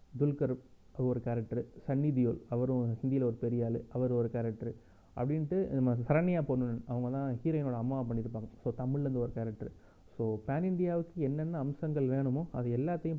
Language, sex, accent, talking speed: Tamil, male, native, 150 wpm